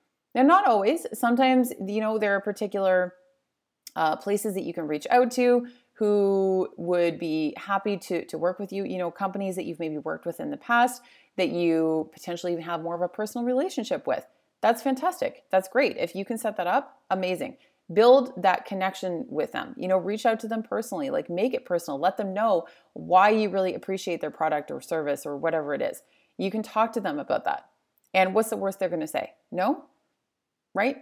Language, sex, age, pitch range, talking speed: English, female, 30-49, 175-245 Hz, 205 wpm